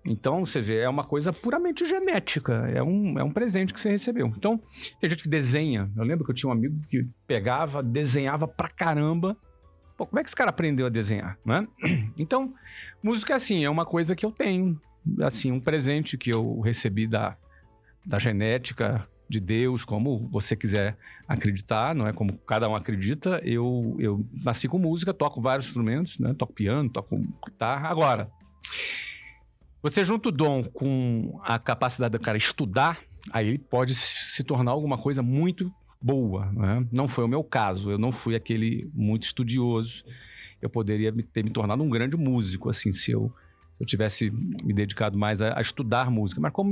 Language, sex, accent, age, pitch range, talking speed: Portuguese, male, Brazilian, 50-69, 110-145 Hz, 180 wpm